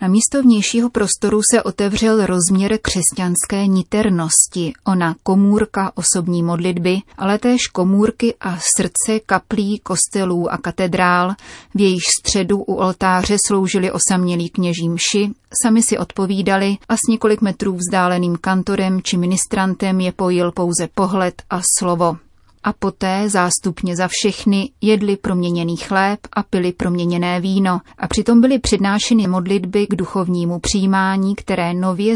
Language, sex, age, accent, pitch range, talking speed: Czech, female, 30-49, native, 180-205 Hz, 130 wpm